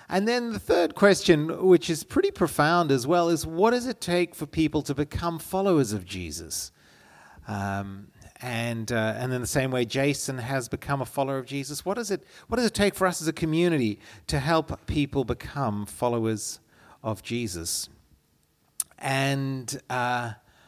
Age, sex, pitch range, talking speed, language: 40-59, male, 115-170 Hz, 170 wpm, English